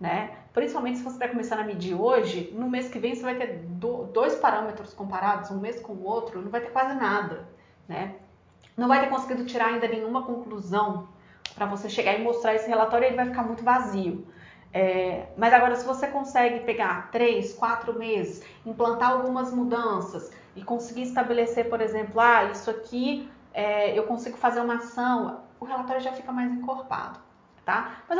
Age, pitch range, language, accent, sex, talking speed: 30-49, 215-255 Hz, Portuguese, Brazilian, female, 175 wpm